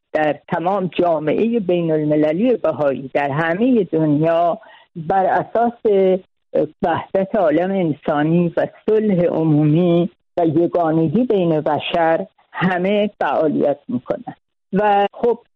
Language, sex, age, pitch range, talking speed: Persian, female, 50-69, 160-215 Hz, 100 wpm